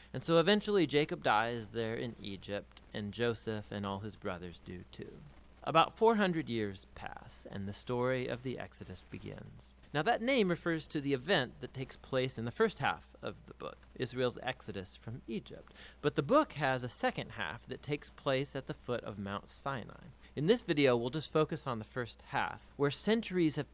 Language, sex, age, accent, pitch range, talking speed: English, male, 40-59, American, 110-155 Hz, 195 wpm